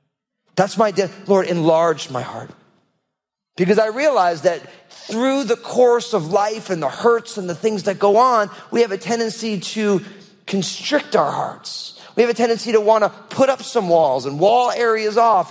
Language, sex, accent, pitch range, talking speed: English, male, American, 175-230 Hz, 180 wpm